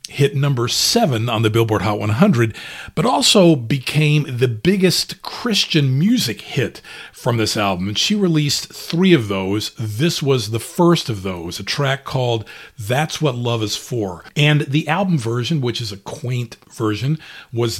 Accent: American